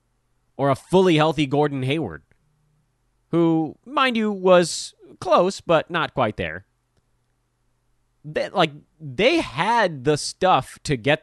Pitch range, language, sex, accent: 120-175 Hz, English, male, American